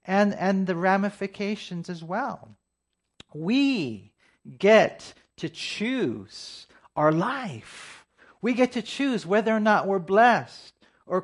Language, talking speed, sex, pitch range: English, 115 wpm, male, 140-195 Hz